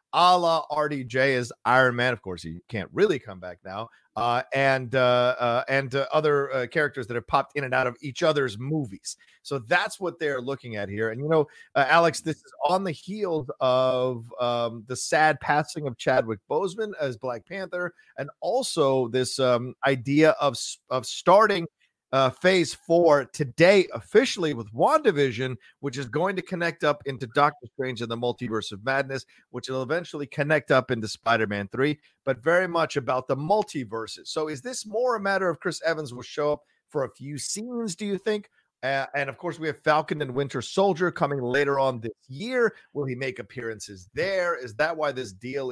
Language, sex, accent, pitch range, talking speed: English, male, American, 125-160 Hz, 195 wpm